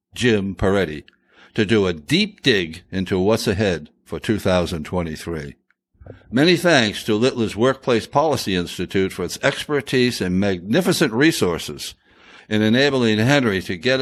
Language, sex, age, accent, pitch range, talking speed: English, male, 60-79, American, 95-130 Hz, 130 wpm